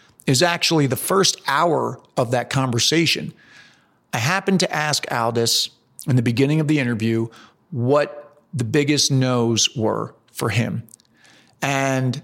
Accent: American